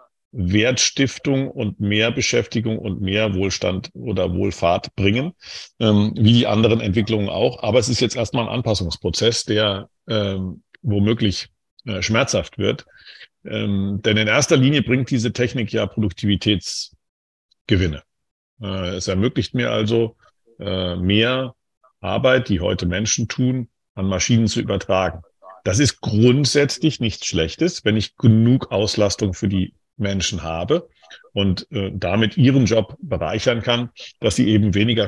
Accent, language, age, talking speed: German, German, 50-69, 135 wpm